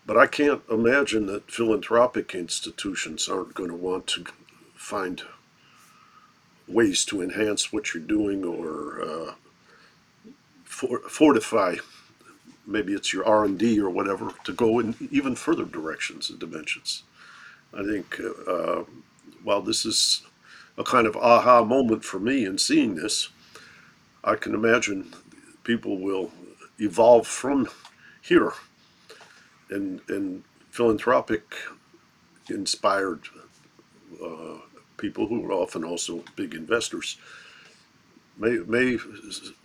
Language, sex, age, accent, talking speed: English, male, 50-69, American, 110 wpm